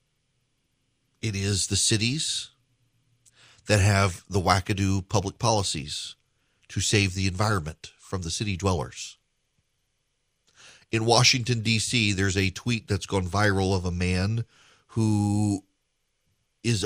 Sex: male